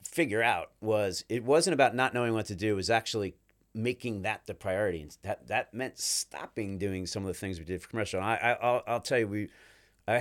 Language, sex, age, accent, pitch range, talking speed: English, male, 40-59, American, 95-125 Hz, 235 wpm